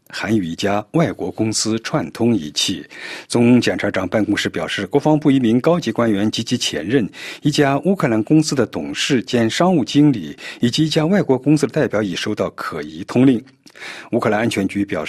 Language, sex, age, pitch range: Chinese, male, 50-69, 110-150 Hz